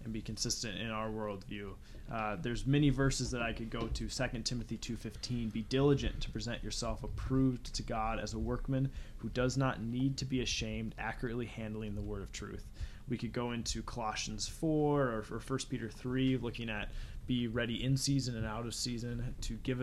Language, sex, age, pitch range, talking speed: English, male, 20-39, 110-130 Hz, 195 wpm